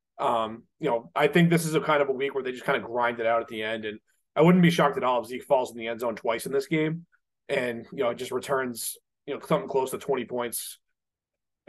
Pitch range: 125-175 Hz